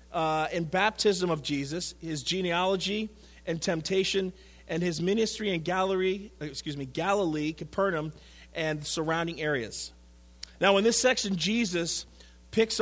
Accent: American